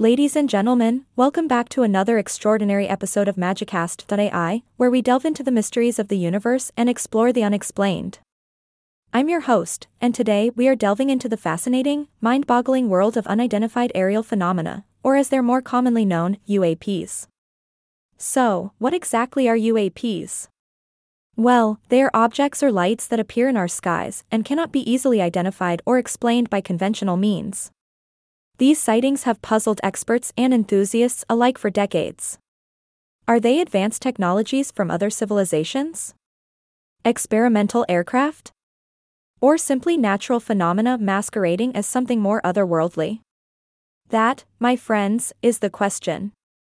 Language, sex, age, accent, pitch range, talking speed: English, female, 20-39, American, 200-250 Hz, 140 wpm